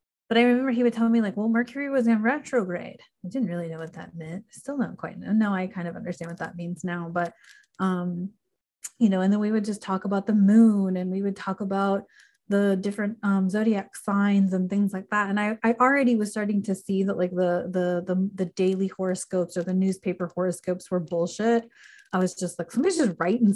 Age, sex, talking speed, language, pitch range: 30-49, female, 225 wpm, English, 185-220 Hz